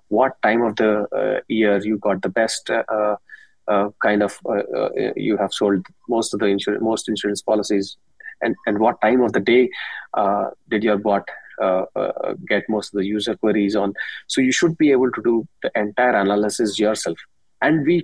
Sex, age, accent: male, 20-39, Indian